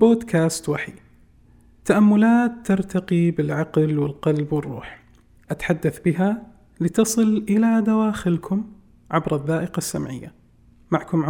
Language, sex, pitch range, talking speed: Arabic, male, 155-190 Hz, 85 wpm